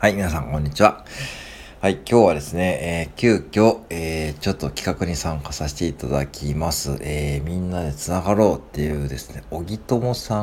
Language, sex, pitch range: Japanese, male, 70-90 Hz